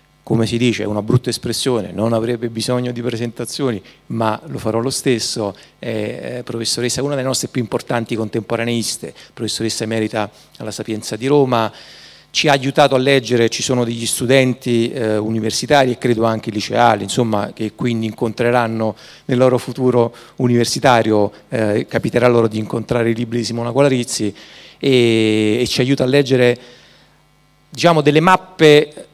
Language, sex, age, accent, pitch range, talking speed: Italian, male, 40-59, native, 110-130 Hz, 150 wpm